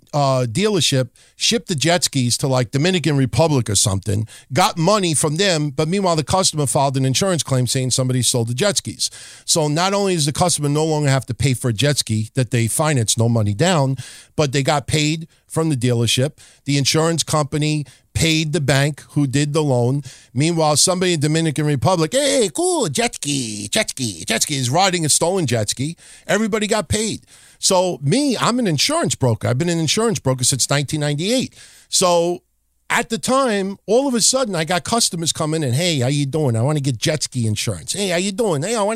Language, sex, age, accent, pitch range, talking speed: English, male, 50-69, American, 130-185 Hz, 210 wpm